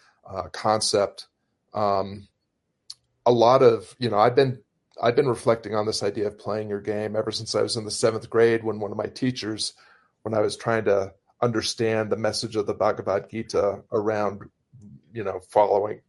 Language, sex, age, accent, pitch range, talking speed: English, male, 40-59, American, 105-130 Hz, 180 wpm